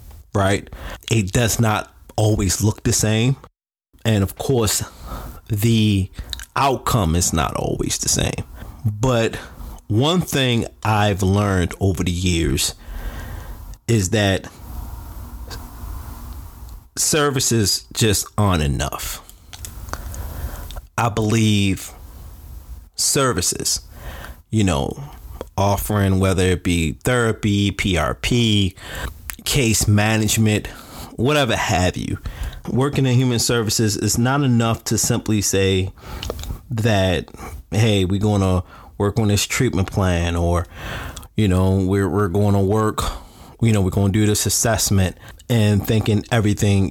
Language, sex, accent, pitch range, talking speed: English, male, American, 85-110 Hz, 110 wpm